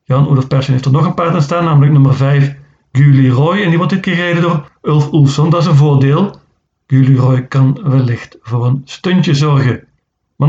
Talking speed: 200 wpm